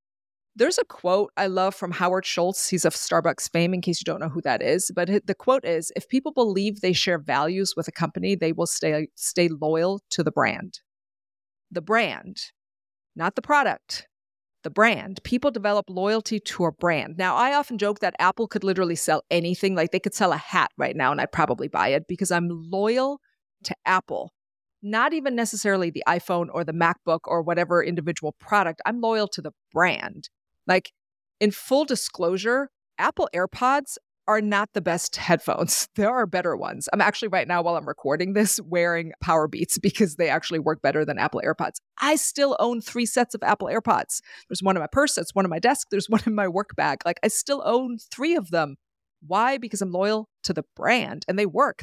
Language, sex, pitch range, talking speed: English, female, 170-215 Hz, 200 wpm